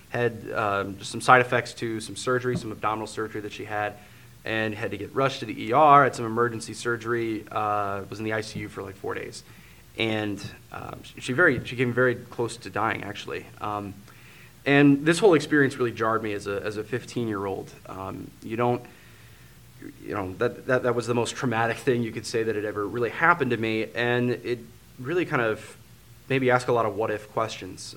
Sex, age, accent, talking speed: male, 20-39, American, 210 wpm